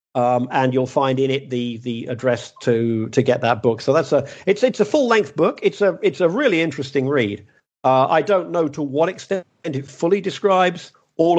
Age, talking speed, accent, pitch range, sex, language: 50-69, 215 wpm, British, 130-175 Hz, male, English